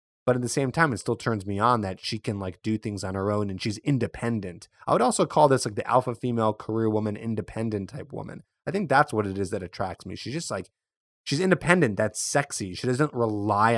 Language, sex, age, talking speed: English, male, 30-49, 240 wpm